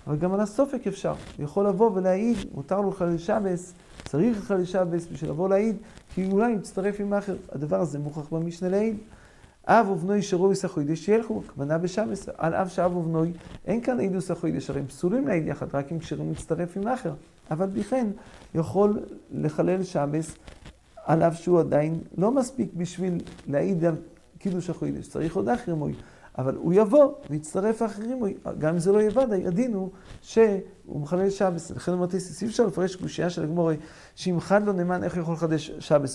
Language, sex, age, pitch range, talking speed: English, male, 40-59, 160-200 Hz, 165 wpm